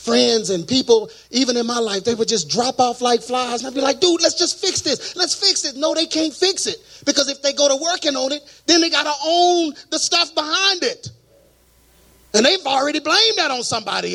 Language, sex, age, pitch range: English, male, 30-49, 185-285 Hz